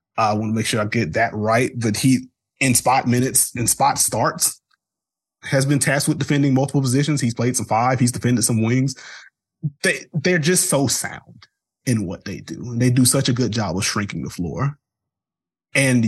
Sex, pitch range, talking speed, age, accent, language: male, 110-130 Hz, 200 wpm, 20-39, American, English